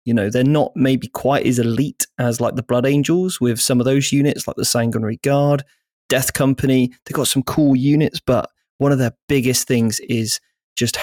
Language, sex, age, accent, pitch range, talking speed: English, male, 20-39, British, 115-130 Hz, 200 wpm